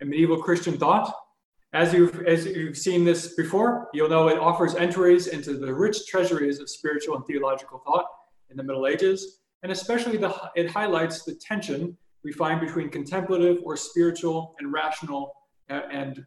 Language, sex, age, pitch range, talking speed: English, male, 30-49, 145-180 Hz, 165 wpm